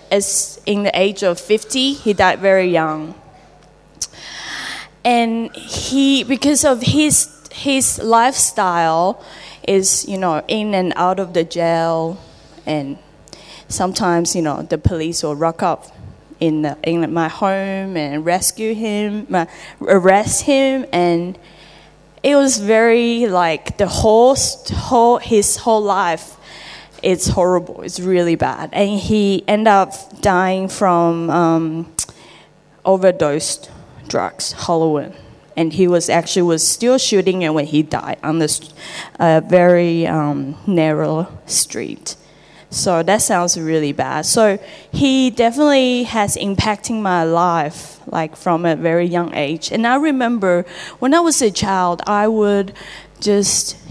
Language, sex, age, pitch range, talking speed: English, female, 10-29, 165-215 Hz, 130 wpm